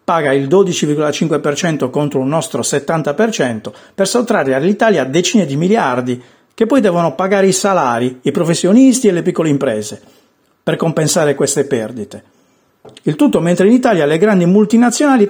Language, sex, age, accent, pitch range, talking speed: Italian, male, 50-69, native, 140-200 Hz, 145 wpm